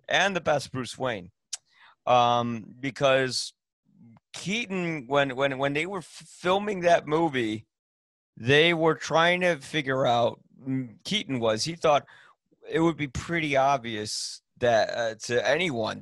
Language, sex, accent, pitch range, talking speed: English, male, American, 110-140 Hz, 130 wpm